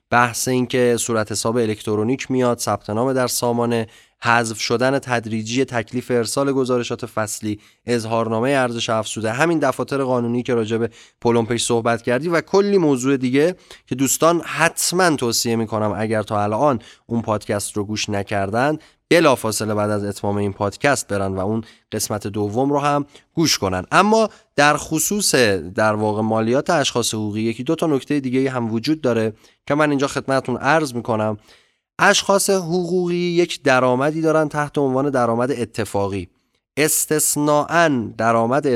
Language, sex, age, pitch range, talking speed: Persian, male, 20-39, 110-145 Hz, 145 wpm